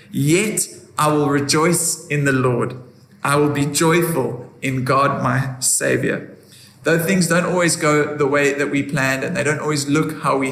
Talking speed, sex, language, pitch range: 185 wpm, male, English, 130-155 Hz